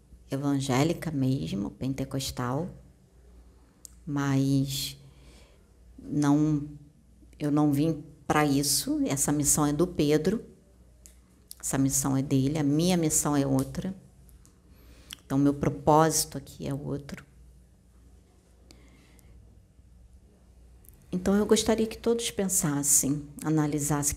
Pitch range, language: 125-175 Hz, Portuguese